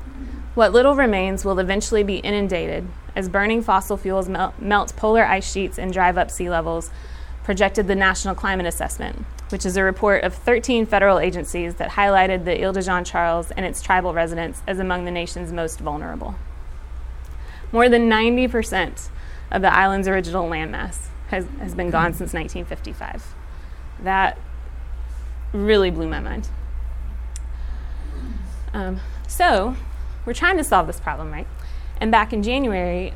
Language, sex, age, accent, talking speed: English, female, 20-39, American, 150 wpm